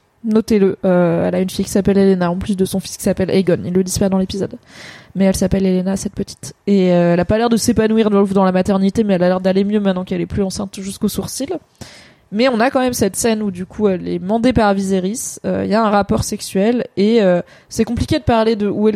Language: French